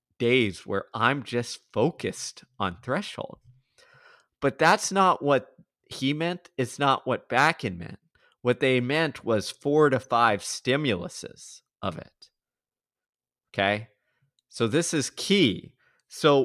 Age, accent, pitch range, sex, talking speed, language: 20-39, American, 105-135 Hz, male, 125 wpm, English